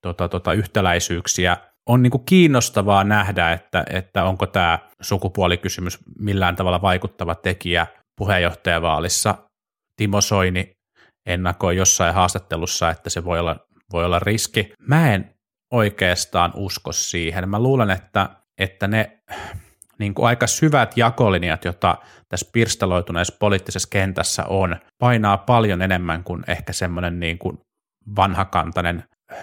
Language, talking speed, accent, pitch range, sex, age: Finnish, 120 wpm, native, 90-105 Hz, male, 30-49